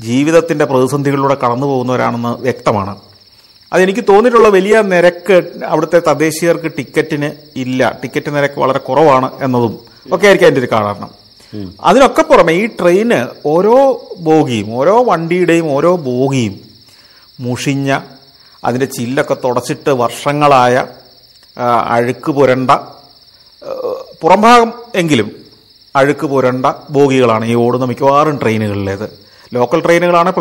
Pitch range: 125-180 Hz